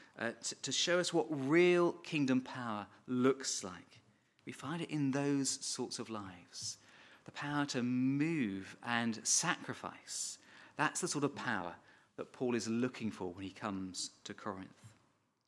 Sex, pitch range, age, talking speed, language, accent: male, 120-165 Hz, 40-59, 155 wpm, English, British